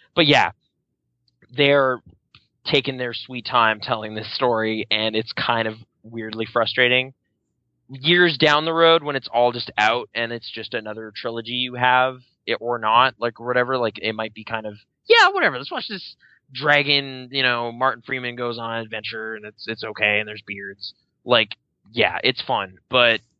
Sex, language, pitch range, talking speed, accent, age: male, English, 110-130 Hz, 175 wpm, American, 20-39